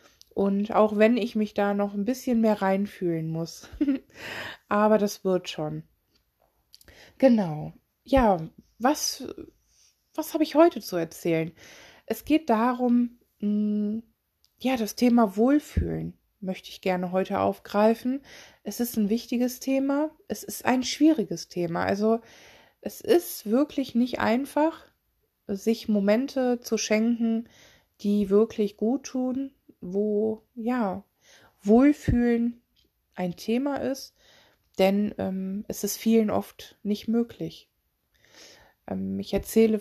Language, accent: German, German